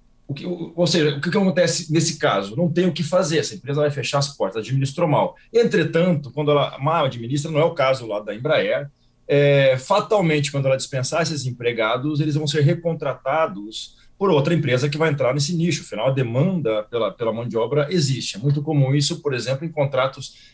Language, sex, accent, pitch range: Portuguese, male, Brazilian, 130-170 Hz